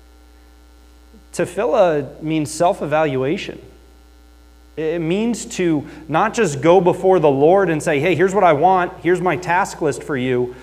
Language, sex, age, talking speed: English, male, 30-49, 140 wpm